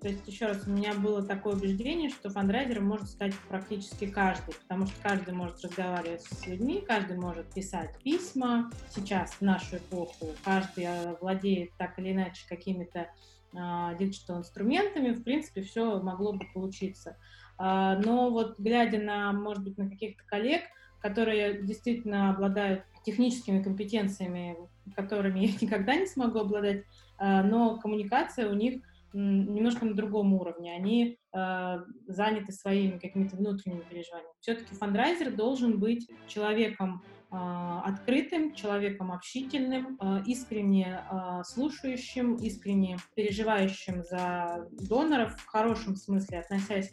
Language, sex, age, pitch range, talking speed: Russian, female, 20-39, 185-225 Hz, 130 wpm